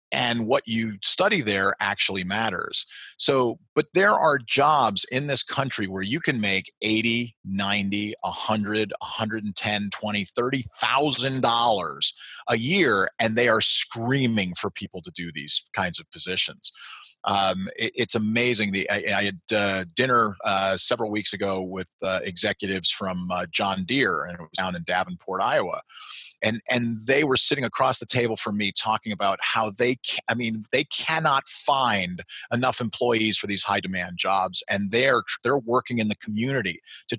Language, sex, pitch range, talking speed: English, male, 95-115 Hz, 165 wpm